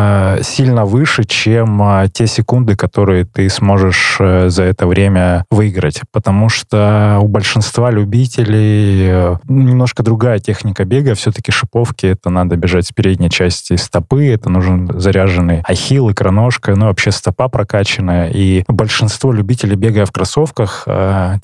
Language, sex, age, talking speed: Russian, male, 20-39, 145 wpm